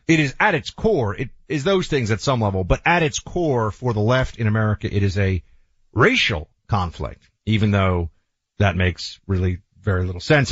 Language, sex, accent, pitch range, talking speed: English, male, American, 100-140 Hz, 195 wpm